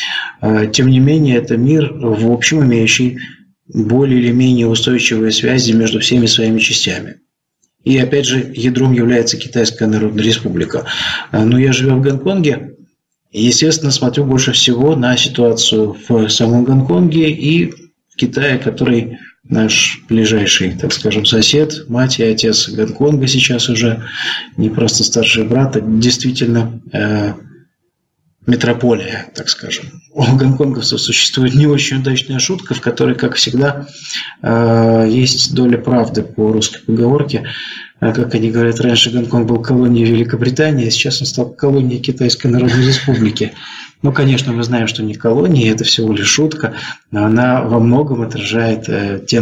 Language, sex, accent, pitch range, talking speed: Russian, male, native, 115-135 Hz, 140 wpm